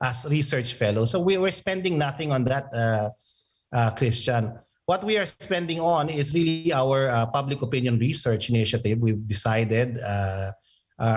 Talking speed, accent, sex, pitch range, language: 155 wpm, Filipino, male, 120-150 Hz, English